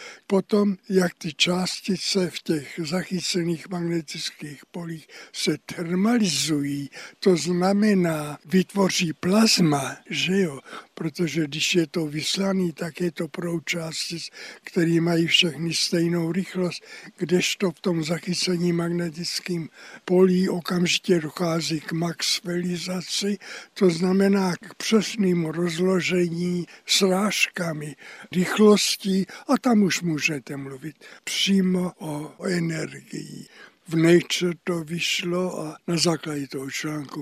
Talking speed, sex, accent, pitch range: 110 wpm, male, native, 160-185 Hz